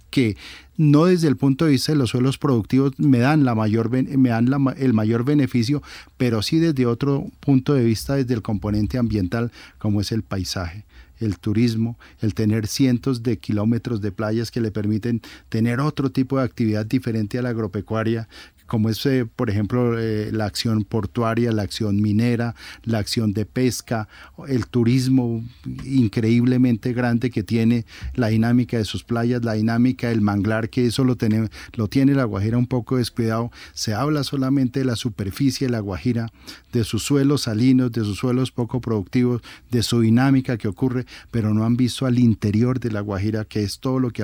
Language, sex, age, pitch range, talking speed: Spanish, male, 40-59, 110-125 Hz, 175 wpm